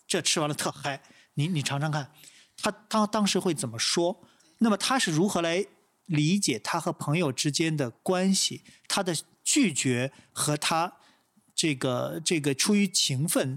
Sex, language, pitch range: male, Chinese, 135-190 Hz